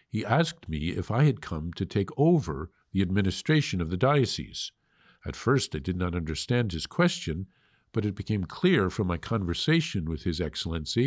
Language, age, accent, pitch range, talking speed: English, 50-69, American, 90-125 Hz, 180 wpm